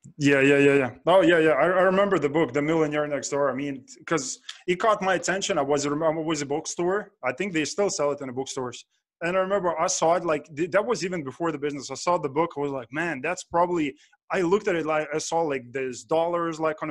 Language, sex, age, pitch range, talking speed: English, male, 20-39, 145-175 Hz, 265 wpm